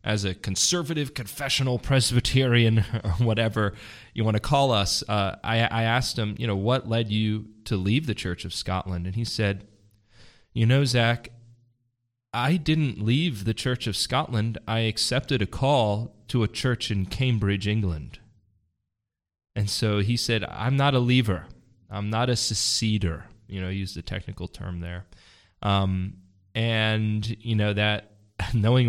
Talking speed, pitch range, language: 160 wpm, 100-115 Hz, English